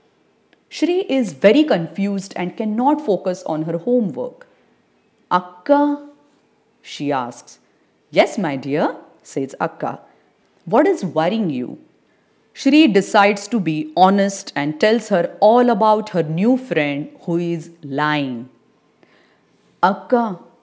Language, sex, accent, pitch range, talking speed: English, female, Indian, 175-285 Hz, 115 wpm